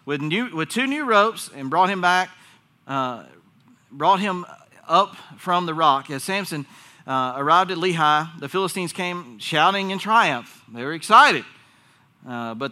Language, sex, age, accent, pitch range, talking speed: English, male, 40-59, American, 150-200 Hz, 155 wpm